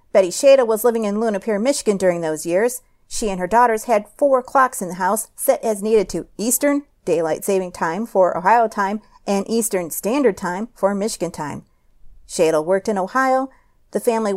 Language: English